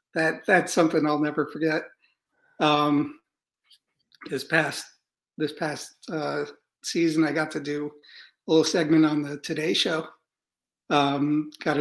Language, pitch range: English, 155-210 Hz